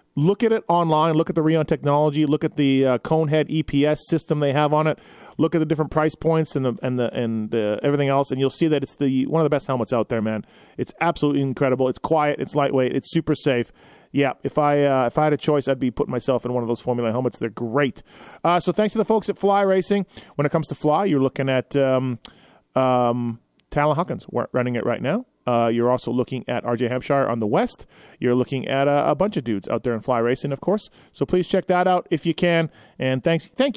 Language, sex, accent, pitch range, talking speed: English, male, American, 130-175 Hz, 250 wpm